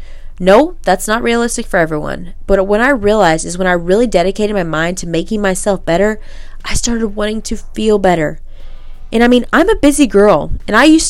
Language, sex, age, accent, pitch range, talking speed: English, female, 20-39, American, 170-225 Hz, 200 wpm